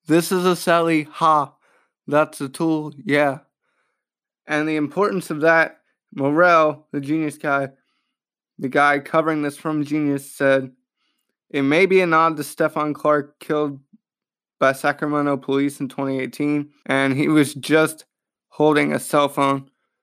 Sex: male